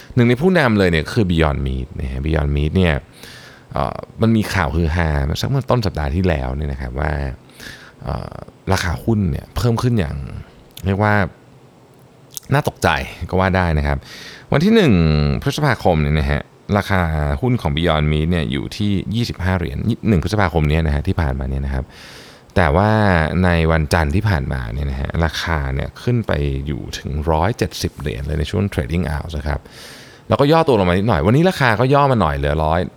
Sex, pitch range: male, 75-110 Hz